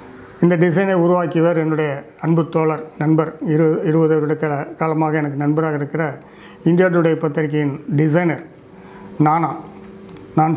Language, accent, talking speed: Tamil, native, 110 wpm